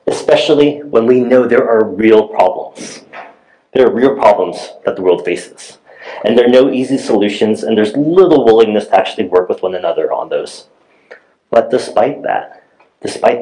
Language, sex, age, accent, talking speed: English, male, 30-49, American, 170 wpm